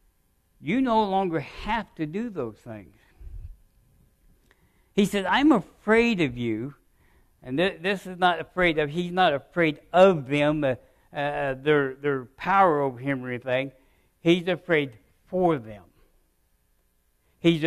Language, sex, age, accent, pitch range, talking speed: English, male, 60-79, American, 130-185 Hz, 135 wpm